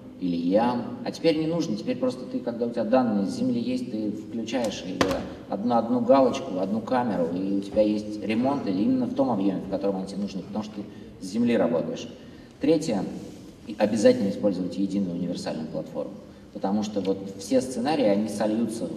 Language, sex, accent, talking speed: Russian, male, native, 180 wpm